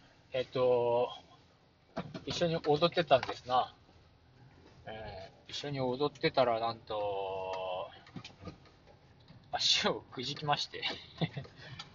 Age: 20-39